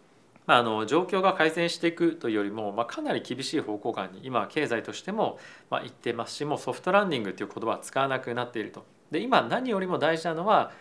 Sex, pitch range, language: male, 115-165 Hz, Japanese